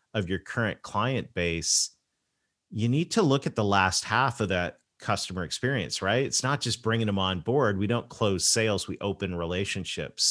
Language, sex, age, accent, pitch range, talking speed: English, male, 40-59, American, 90-115 Hz, 185 wpm